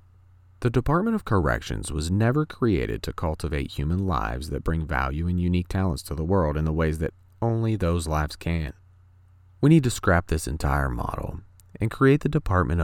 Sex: male